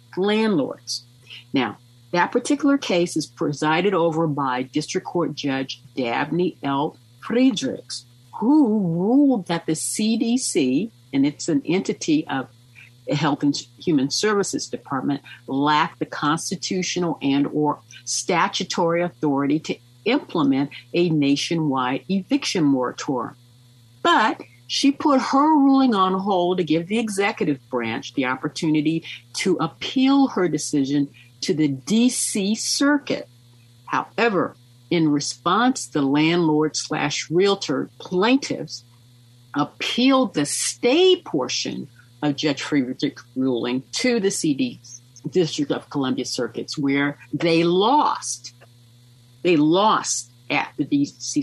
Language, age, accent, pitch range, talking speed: English, 50-69, American, 125-195 Hz, 115 wpm